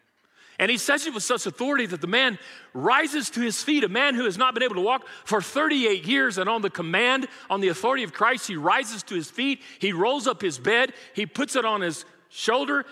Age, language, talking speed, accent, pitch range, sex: 40-59, English, 235 wpm, American, 180-245 Hz, male